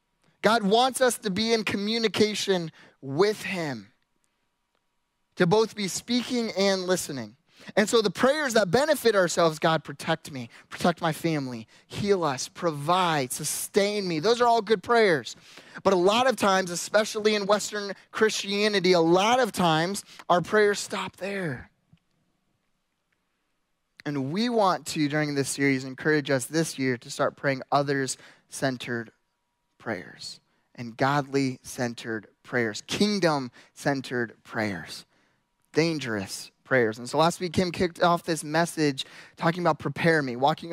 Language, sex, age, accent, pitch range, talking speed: English, male, 20-39, American, 150-210 Hz, 135 wpm